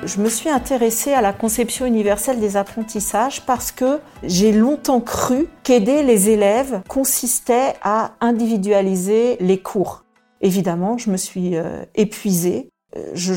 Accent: French